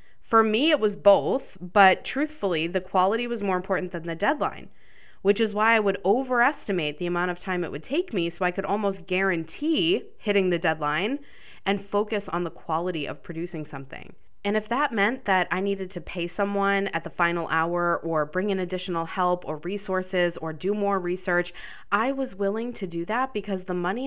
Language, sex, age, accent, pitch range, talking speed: English, female, 20-39, American, 165-205 Hz, 195 wpm